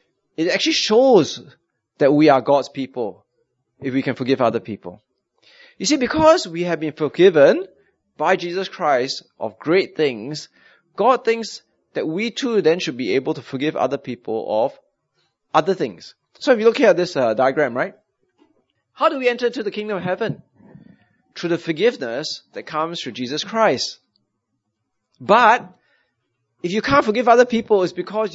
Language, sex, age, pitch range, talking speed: English, male, 20-39, 140-215 Hz, 165 wpm